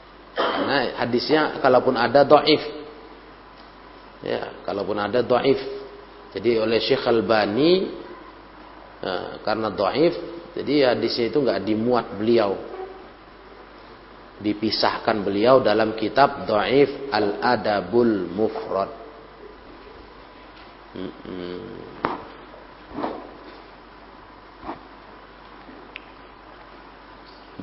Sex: male